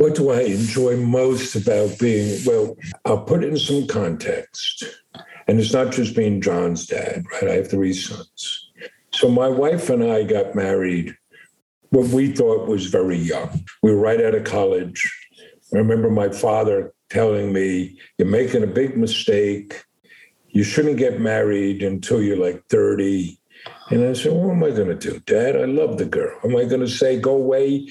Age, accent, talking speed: 50-69, American, 185 wpm